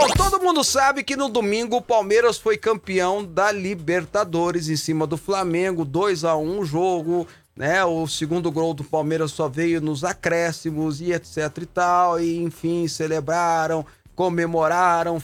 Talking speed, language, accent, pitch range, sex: 150 wpm, Portuguese, Brazilian, 150-190 Hz, male